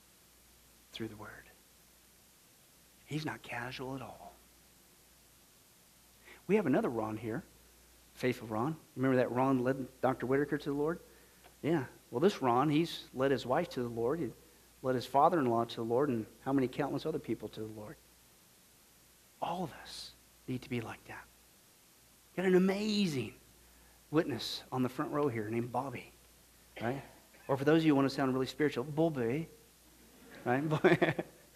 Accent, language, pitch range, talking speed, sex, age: American, English, 120-155 Hz, 160 wpm, male, 50-69